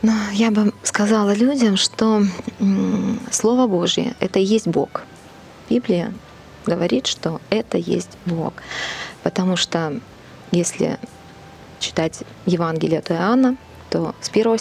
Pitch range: 170-220 Hz